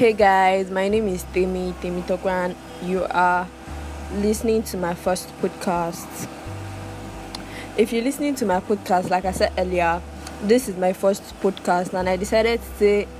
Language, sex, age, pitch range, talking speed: English, female, 20-39, 180-215 Hz, 160 wpm